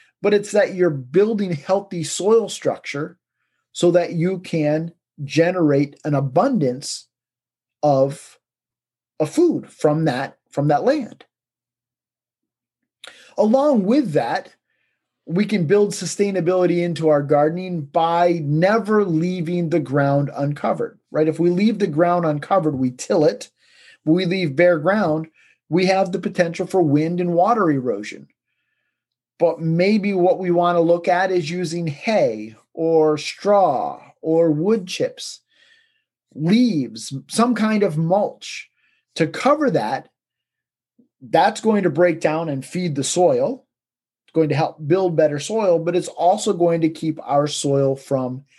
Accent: American